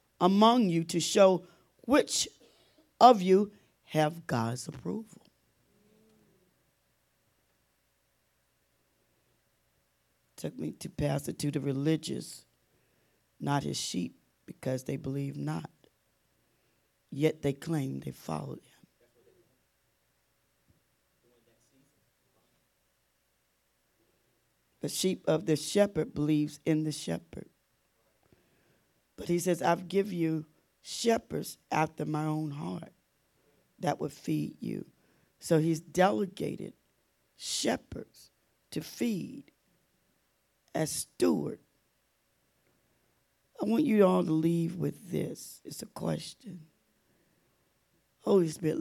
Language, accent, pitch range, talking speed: English, American, 140-185 Hz, 95 wpm